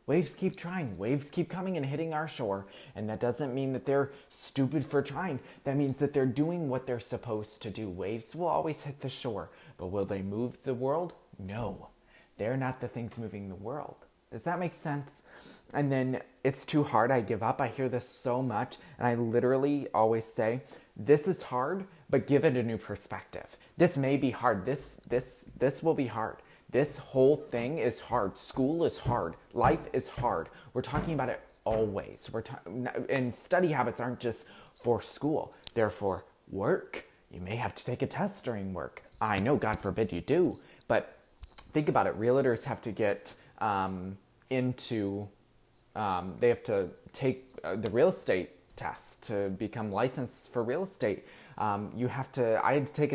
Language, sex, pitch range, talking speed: English, male, 110-145 Hz, 190 wpm